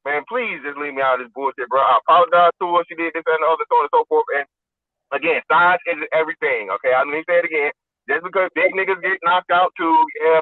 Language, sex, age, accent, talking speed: English, male, 30-49, American, 260 wpm